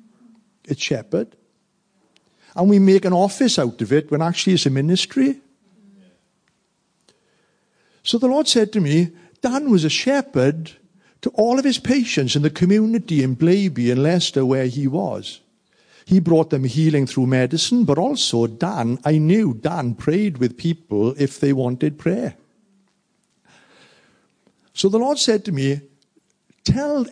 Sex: male